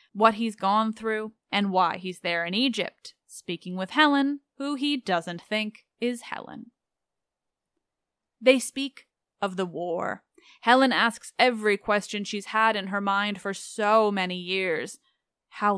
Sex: female